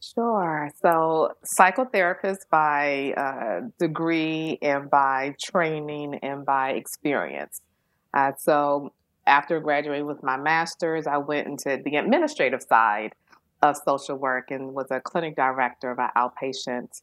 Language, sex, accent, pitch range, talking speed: English, female, American, 145-175 Hz, 125 wpm